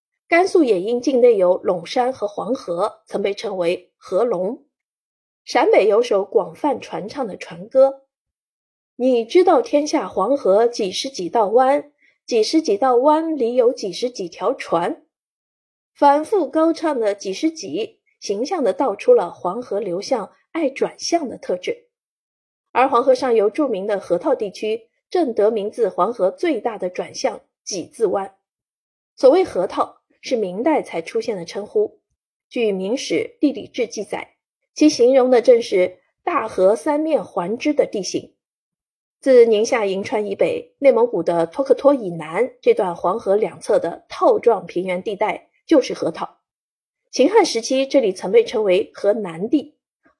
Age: 30-49